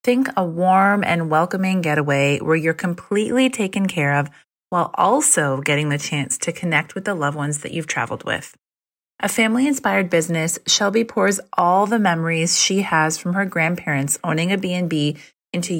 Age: 30-49